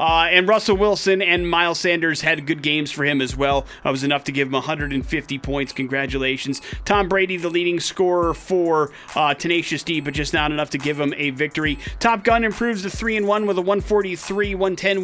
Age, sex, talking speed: 30-49, male, 195 wpm